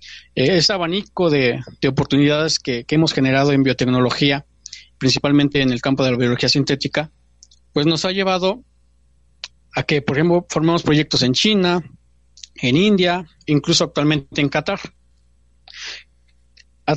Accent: Mexican